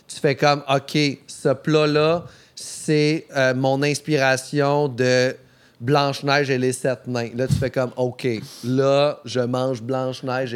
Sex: male